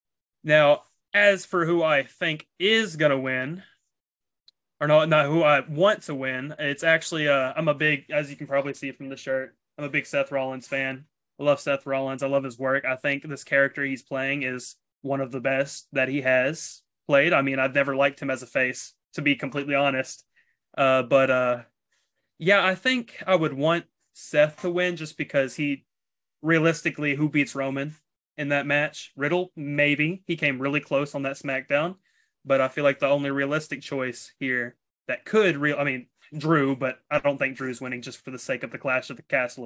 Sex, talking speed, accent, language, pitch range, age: male, 205 wpm, American, English, 135-155 Hz, 20-39